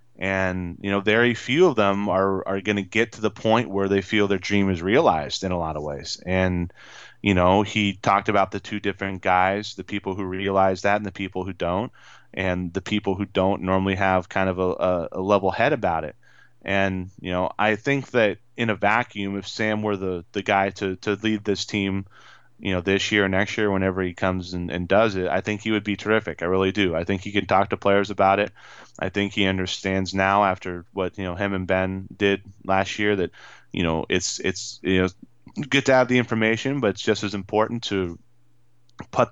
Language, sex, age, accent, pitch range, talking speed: English, male, 20-39, American, 95-110 Hz, 225 wpm